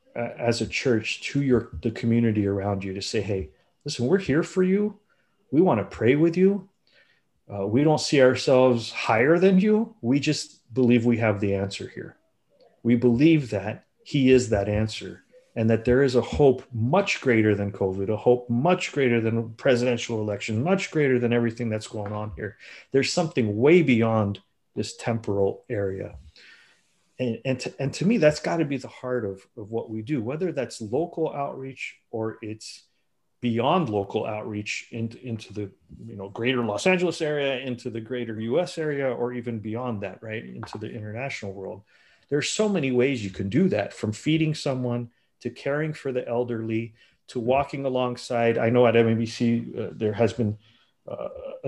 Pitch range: 110-135 Hz